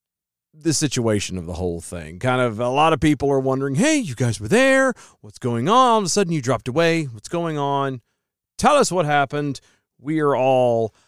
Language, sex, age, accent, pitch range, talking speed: English, male, 40-59, American, 95-150 Hz, 210 wpm